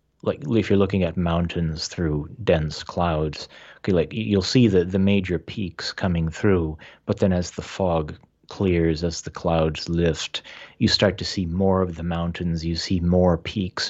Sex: male